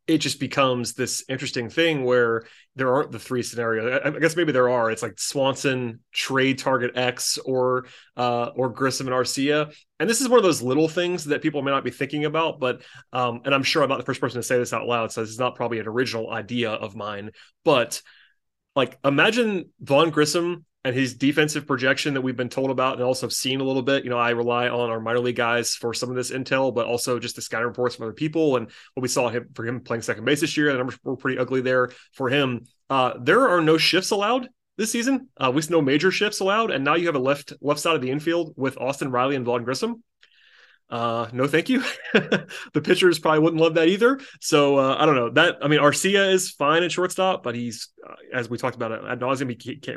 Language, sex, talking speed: English, male, 240 wpm